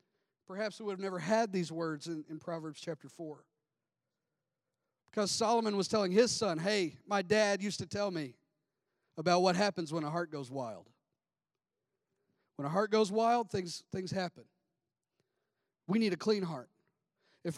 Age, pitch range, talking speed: 40-59, 165-220 Hz, 165 wpm